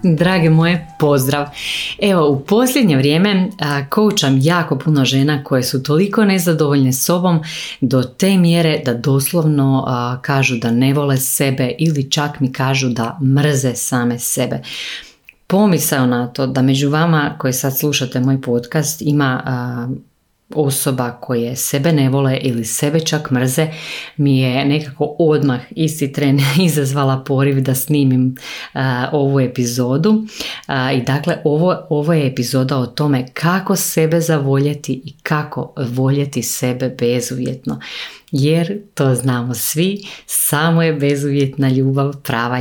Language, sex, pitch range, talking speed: Croatian, female, 130-155 Hz, 135 wpm